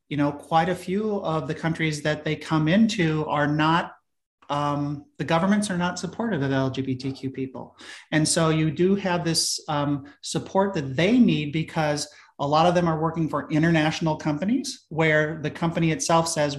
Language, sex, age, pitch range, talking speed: English, male, 40-59, 145-170 Hz, 175 wpm